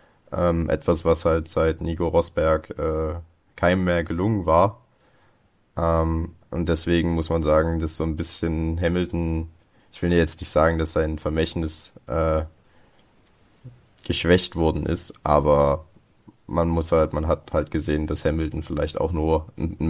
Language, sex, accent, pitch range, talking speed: German, male, German, 80-90 Hz, 150 wpm